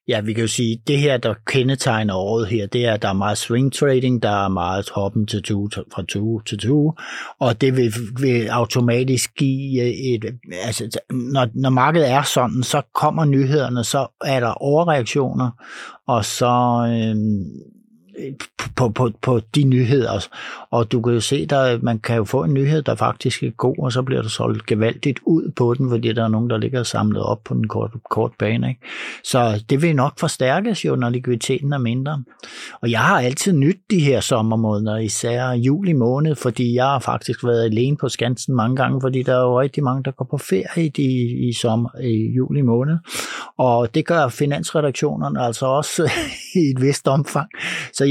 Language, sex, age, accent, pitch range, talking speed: Danish, male, 60-79, native, 115-140 Hz, 190 wpm